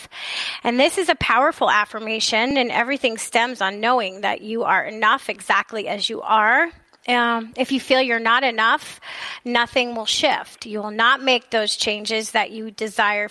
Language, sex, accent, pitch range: English, female, American, 220-255 Hz